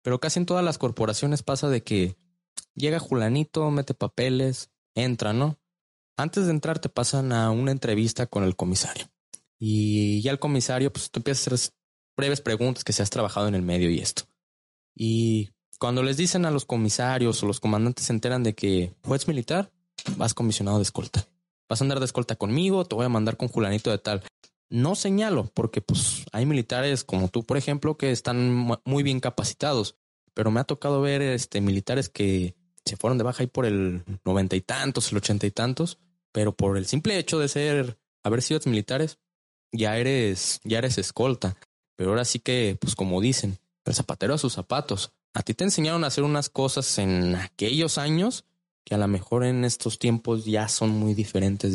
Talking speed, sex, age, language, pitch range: 190 wpm, male, 20-39, Spanish, 105-140 Hz